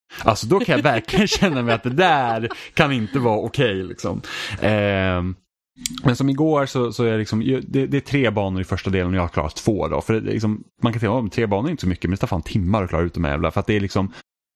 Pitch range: 100-125 Hz